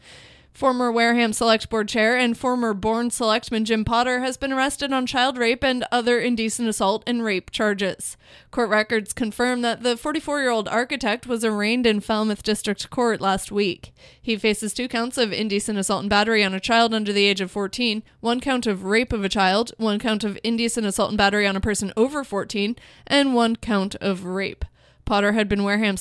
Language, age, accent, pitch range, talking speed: English, 20-39, American, 210-245 Hz, 195 wpm